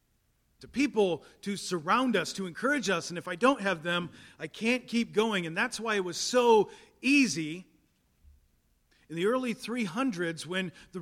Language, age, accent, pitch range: English, 40-59, American, 155-210 Hz